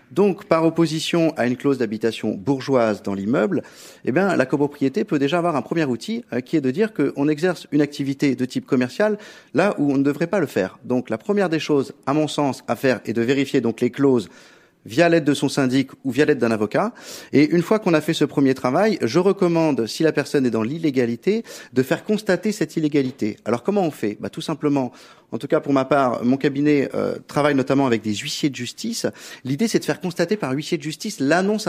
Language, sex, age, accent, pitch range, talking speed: French, male, 40-59, French, 130-175 Hz, 225 wpm